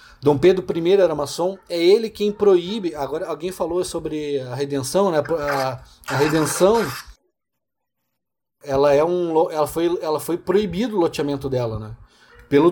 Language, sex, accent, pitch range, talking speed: Portuguese, male, Brazilian, 135-180 Hz, 150 wpm